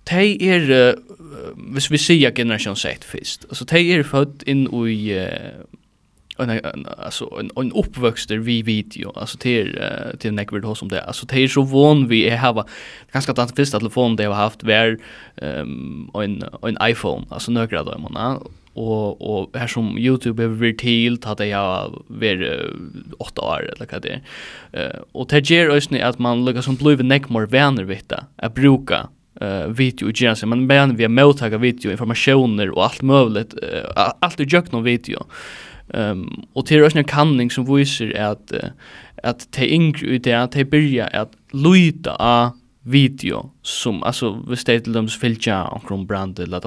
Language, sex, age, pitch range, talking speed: English, male, 20-39, 110-135 Hz, 170 wpm